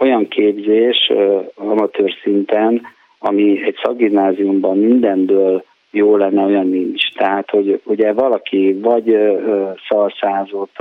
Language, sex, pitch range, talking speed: Hungarian, male, 95-110 Hz, 110 wpm